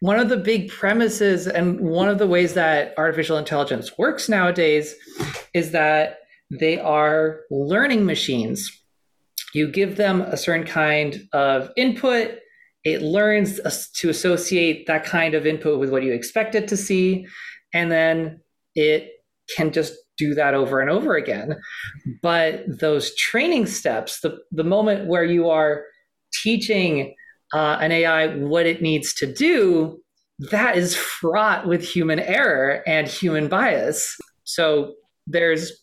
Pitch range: 155-205 Hz